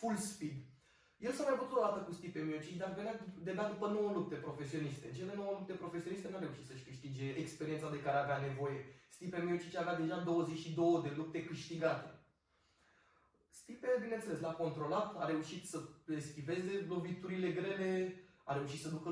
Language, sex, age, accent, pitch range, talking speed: Romanian, male, 20-39, native, 145-175 Hz, 170 wpm